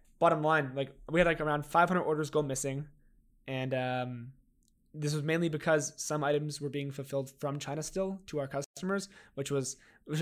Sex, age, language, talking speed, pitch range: male, 20-39, English, 180 wpm, 135-165 Hz